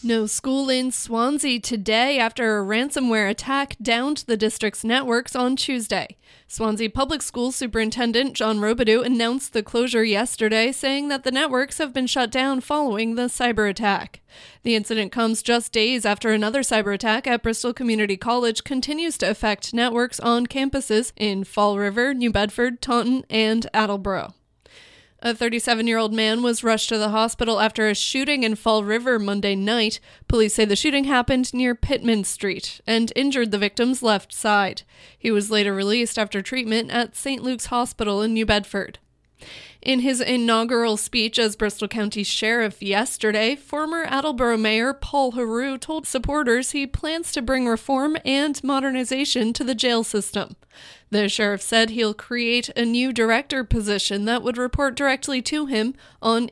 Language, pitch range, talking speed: English, 220-260 Hz, 160 wpm